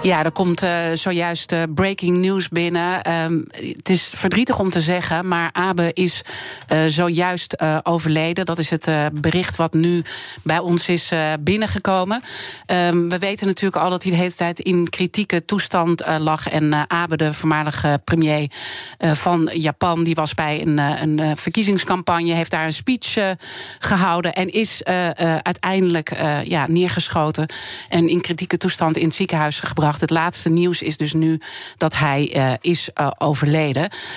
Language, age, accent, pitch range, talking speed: Dutch, 40-59, Dutch, 155-180 Hz, 145 wpm